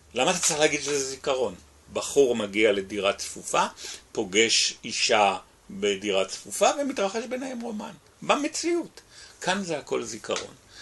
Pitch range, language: 100-170 Hz, Hebrew